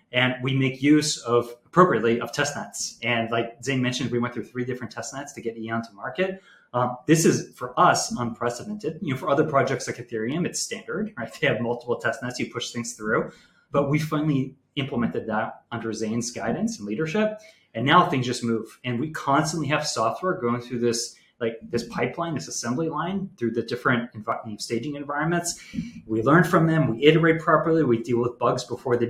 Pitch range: 115-155 Hz